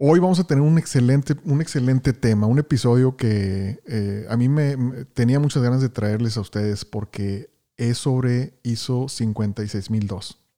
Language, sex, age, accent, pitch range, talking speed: Spanish, male, 40-59, Mexican, 110-130 Hz, 165 wpm